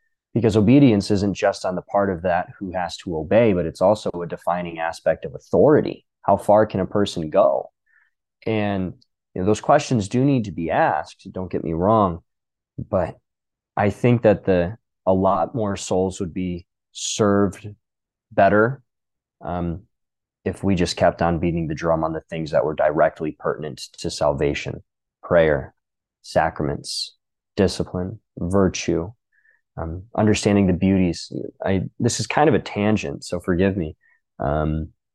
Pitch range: 85-105 Hz